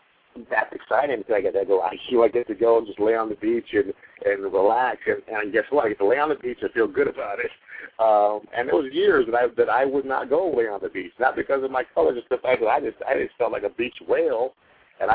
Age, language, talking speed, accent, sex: 50-69, English, 275 wpm, American, male